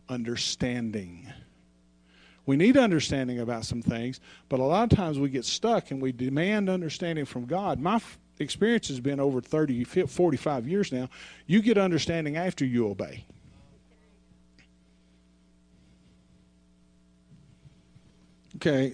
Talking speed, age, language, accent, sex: 115 wpm, 50-69, English, American, male